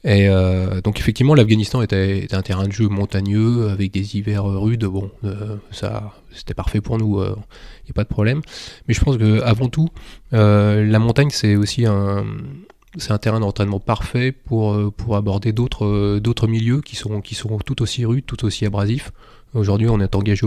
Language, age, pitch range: French, 20-39, 100-115 Hz